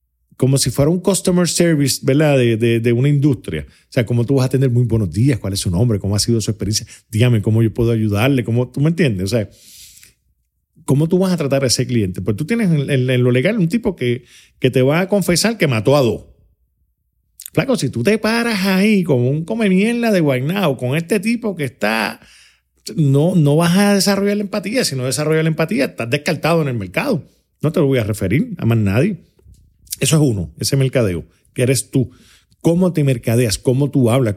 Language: Spanish